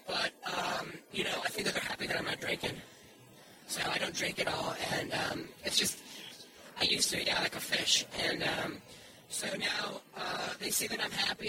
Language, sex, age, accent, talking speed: English, male, 30-49, American, 210 wpm